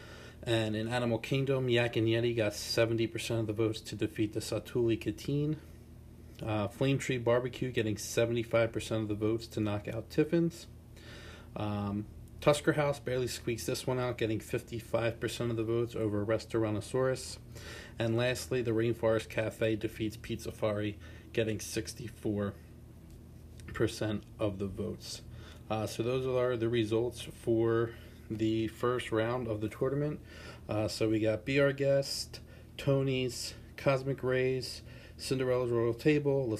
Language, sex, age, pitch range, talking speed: English, male, 40-59, 110-125 Hz, 145 wpm